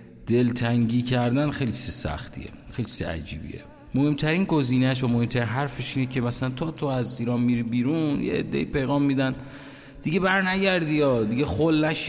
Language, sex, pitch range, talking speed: Persian, male, 95-145 Hz, 150 wpm